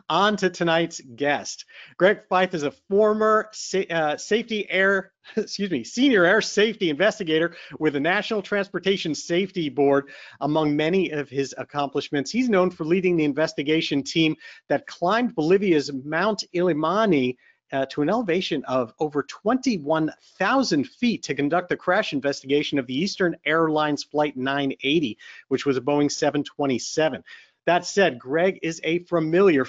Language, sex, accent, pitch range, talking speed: English, male, American, 145-185 Hz, 140 wpm